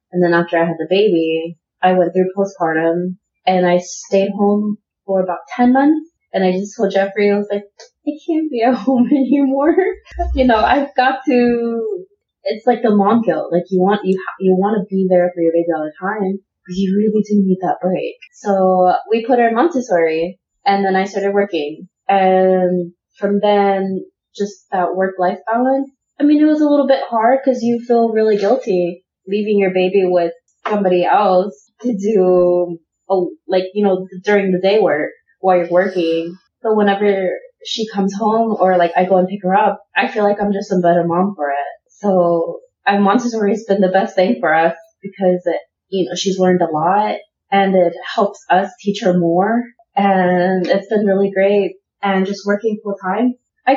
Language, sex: English, female